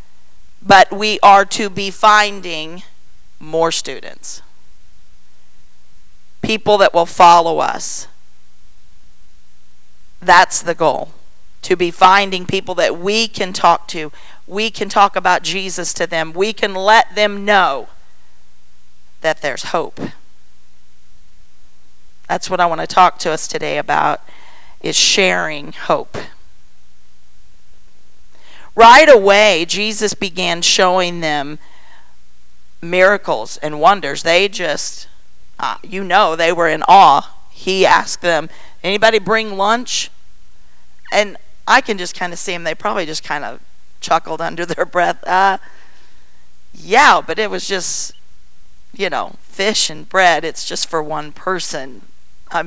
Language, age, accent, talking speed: English, 40-59, American, 125 wpm